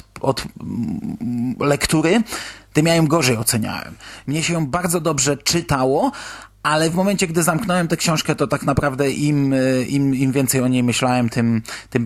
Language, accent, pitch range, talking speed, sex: Polish, native, 120-145 Hz, 155 wpm, male